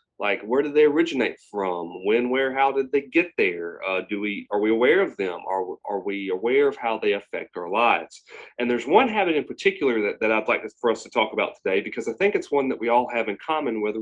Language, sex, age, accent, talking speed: English, male, 30-49, American, 255 wpm